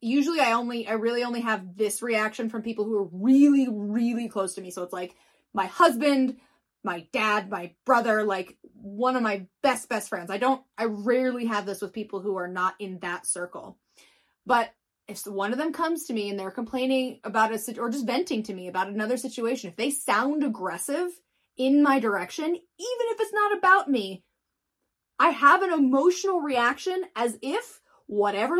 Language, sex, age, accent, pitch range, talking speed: English, female, 20-39, American, 215-285 Hz, 190 wpm